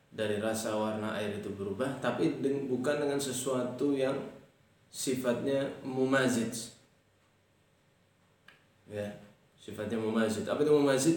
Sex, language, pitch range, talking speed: male, Indonesian, 105-125 Hz, 100 wpm